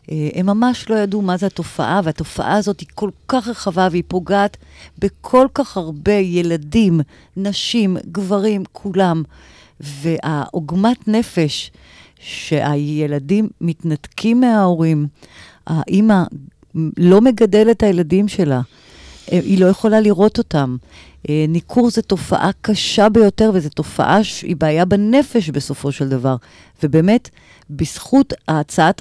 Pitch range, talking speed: 150-205 Hz, 110 wpm